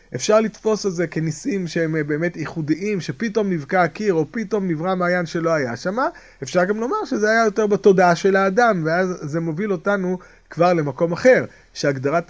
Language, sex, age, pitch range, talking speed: Hebrew, male, 30-49, 155-210 Hz, 170 wpm